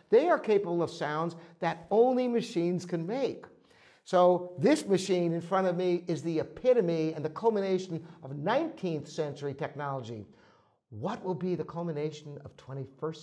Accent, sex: American, male